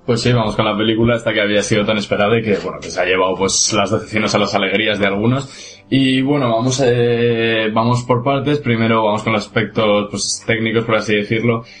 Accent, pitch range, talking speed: Spanish, 100-115 Hz, 225 wpm